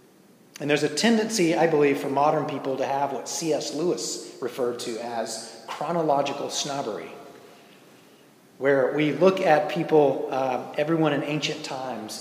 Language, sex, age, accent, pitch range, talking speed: English, male, 30-49, American, 125-155 Hz, 145 wpm